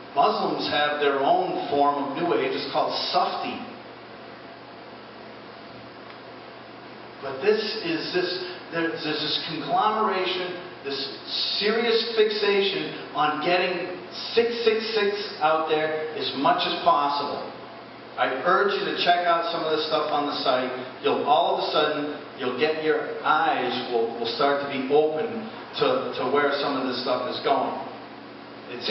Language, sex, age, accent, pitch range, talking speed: English, male, 40-59, American, 140-180 Hz, 145 wpm